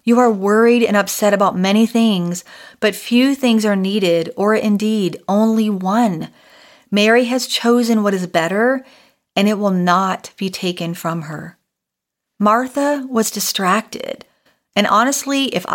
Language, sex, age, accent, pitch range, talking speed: English, female, 40-59, American, 190-245 Hz, 140 wpm